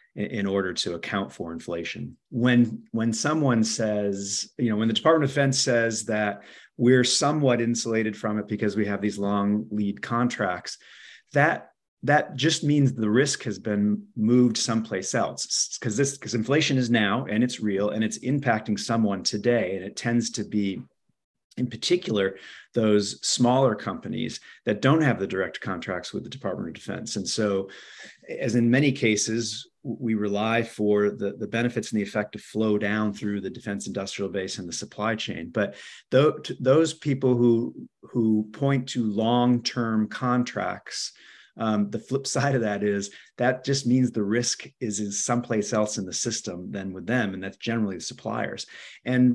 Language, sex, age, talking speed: English, male, 40-59, 175 wpm